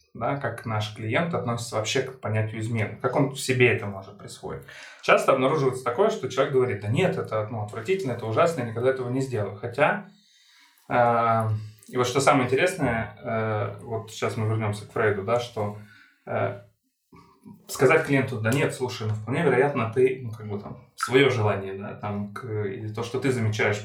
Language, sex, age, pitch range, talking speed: Ukrainian, male, 20-39, 110-130 Hz, 185 wpm